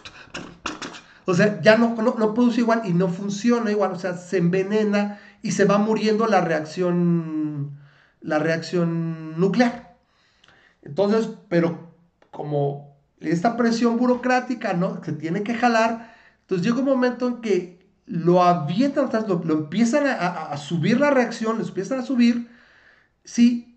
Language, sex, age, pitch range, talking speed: Spanish, male, 40-59, 165-230 Hz, 150 wpm